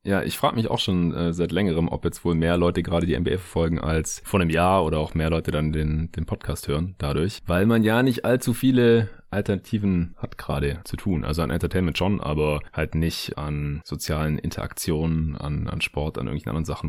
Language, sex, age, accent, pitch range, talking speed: German, male, 30-49, German, 80-105 Hz, 215 wpm